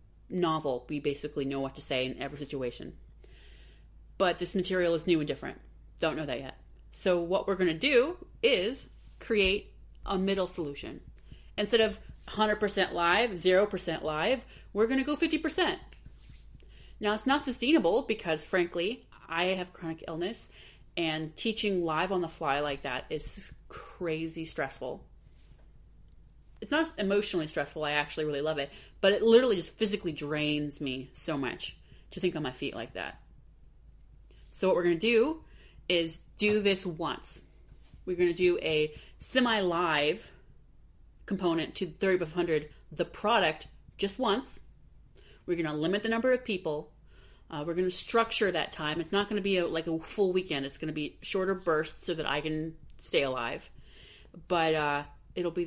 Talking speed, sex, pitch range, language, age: 165 wpm, female, 150-200 Hz, English, 30-49